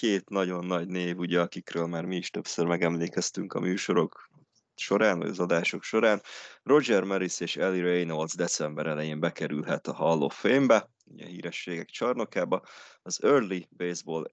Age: 20-39